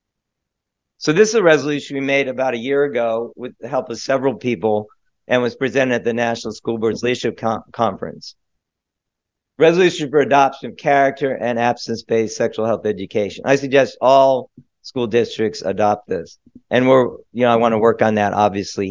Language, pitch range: English, 115-140 Hz